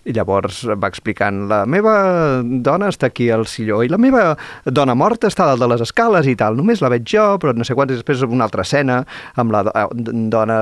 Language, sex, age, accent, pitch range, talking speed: Spanish, male, 30-49, Spanish, 105-125 Hz, 220 wpm